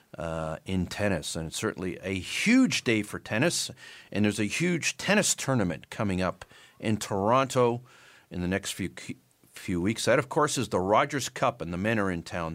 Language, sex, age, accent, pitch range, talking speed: English, male, 50-69, American, 90-125 Hz, 190 wpm